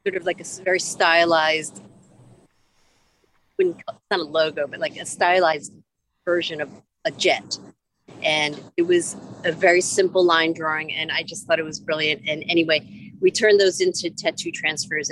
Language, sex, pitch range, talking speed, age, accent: English, female, 155-190 Hz, 160 wpm, 40-59, American